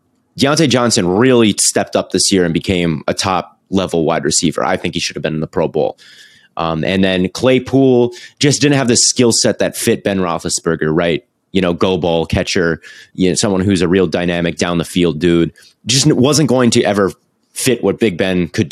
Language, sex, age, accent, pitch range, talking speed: English, male, 30-49, American, 90-115 Hz, 190 wpm